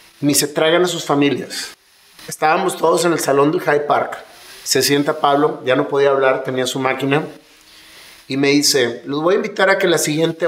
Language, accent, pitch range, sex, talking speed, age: English, Mexican, 140-175 Hz, male, 200 wpm, 40-59